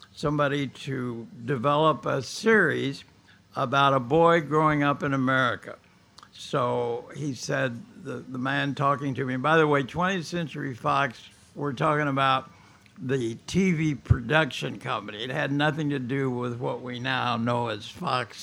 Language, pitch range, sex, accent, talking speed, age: English, 120-150 Hz, male, American, 155 wpm, 60-79